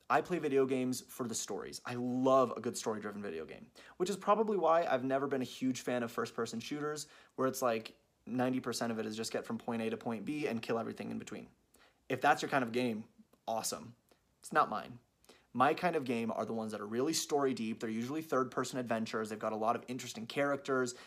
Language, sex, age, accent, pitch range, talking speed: English, male, 30-49, American, 115-160 Hz, 230 wpm